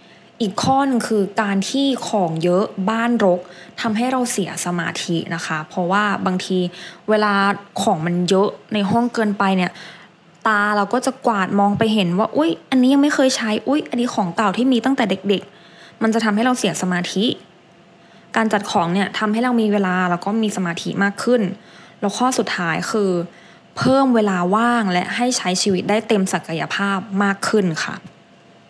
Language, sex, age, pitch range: English, female, 20-39, 185-230 Hz